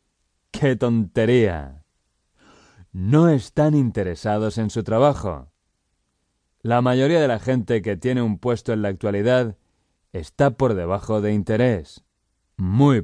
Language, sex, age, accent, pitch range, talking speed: English, male, 30-49, Spanish, 95-130 Hz, 120 wpm